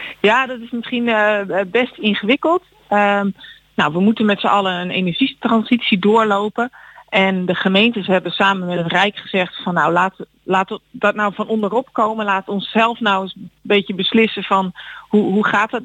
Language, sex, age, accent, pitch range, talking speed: Dutch, female, 40-59, Dutch, 180-220 Hz, 180 wpm